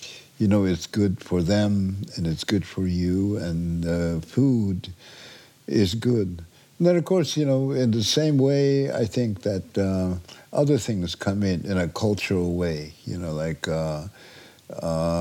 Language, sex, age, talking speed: English, male, 60-79, 160 wpm